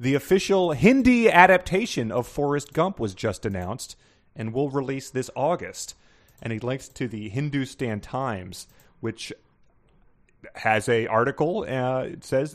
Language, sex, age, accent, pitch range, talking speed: English, male, 30-49, American, 115-150 Hz, 140 wpm